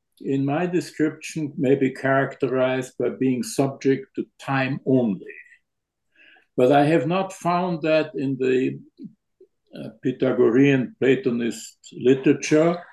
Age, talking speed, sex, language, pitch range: 60-79, 110 wpm, male, English, 135-170 Hz